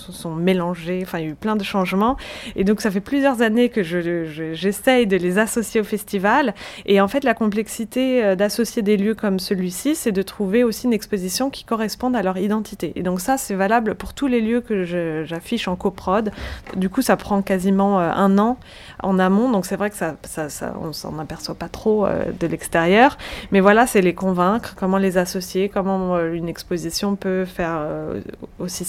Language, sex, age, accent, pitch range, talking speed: French, female, 20-39, French, 170-210 Hz, 205 wpm